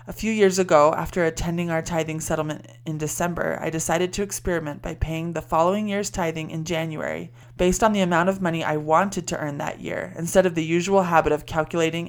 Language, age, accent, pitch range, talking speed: English, 20-39, American, 150-180 Hz, 210 wpm